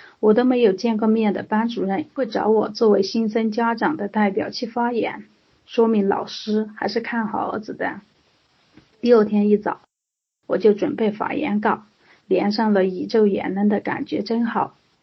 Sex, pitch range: female, 205-225 Hz